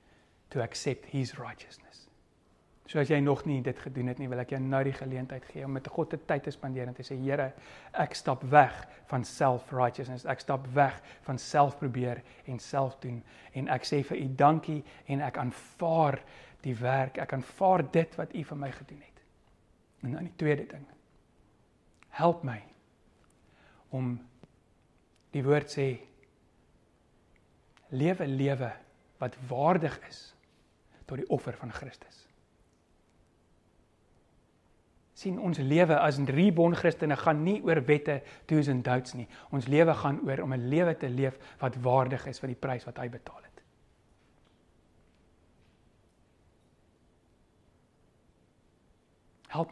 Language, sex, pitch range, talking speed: English, male, 110-145 Hz, 145 wpm